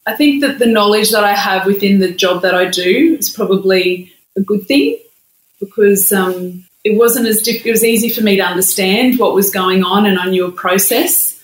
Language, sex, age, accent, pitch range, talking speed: English, female, 30-49, Australian, 180-205 Hz, 215 wpm